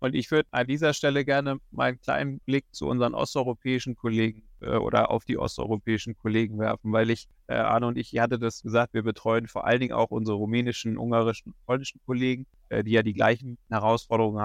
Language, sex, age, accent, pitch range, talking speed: German, male, 30-49, German, 115-135 Hz, 195 wpm